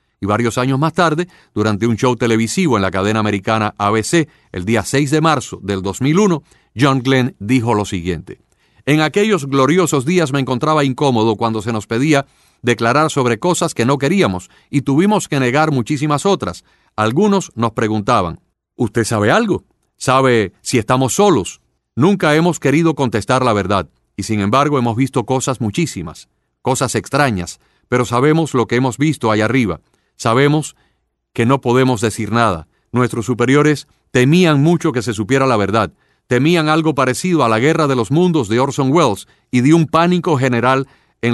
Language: Spanish